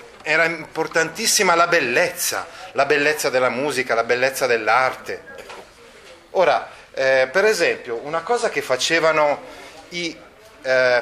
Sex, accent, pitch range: male, native, 145-230 Hz